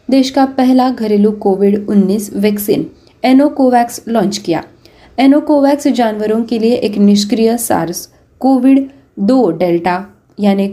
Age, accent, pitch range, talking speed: 20-39, native, 210-265 Hz, 115 wpm